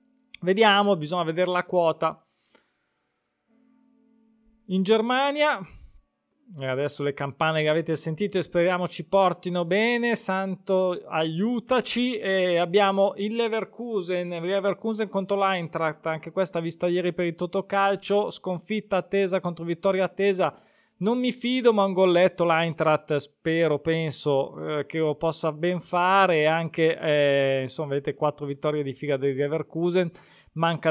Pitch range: 155-200 Hz